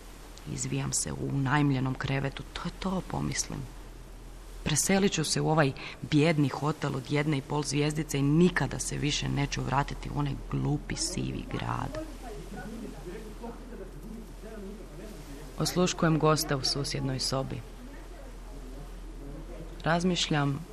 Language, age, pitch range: Croatian, 30-49, 140-160 Hz